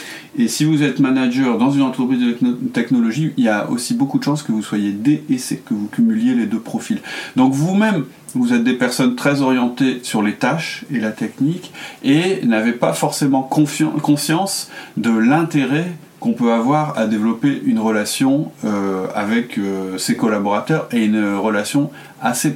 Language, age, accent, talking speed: French, 40-59, French, 170 wpm